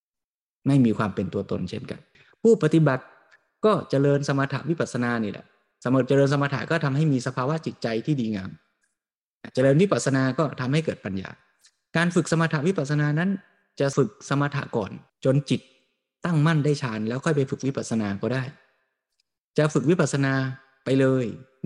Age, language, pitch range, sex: 20-39, Thai, 115-150 Hz, male